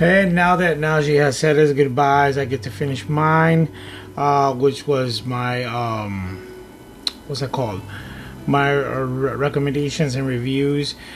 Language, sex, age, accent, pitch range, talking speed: English, male, 30-49, American, 130-150 Hz, 140 wpm